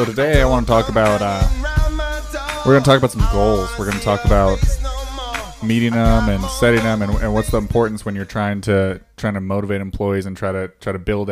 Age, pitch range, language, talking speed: 20-39, 95-115 Hz, English, 225 wpm